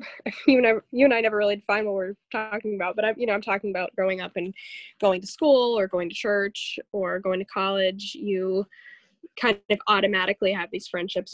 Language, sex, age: English, female, 10-29